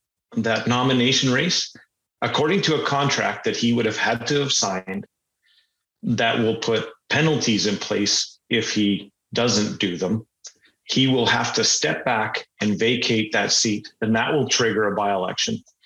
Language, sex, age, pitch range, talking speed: English, male, 40-59, 105-130 Hz, 160 wpm